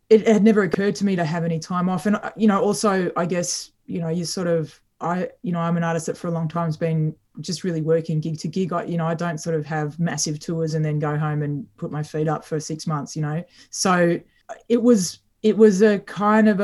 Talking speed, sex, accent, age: 265 wpm, female, Australian, 20-39